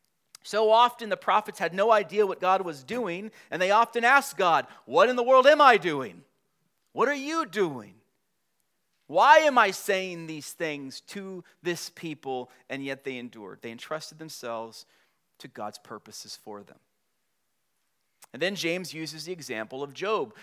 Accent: American